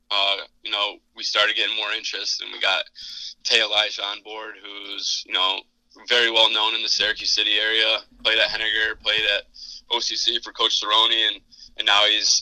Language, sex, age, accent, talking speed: English, male, 20-39, American, 190 wpm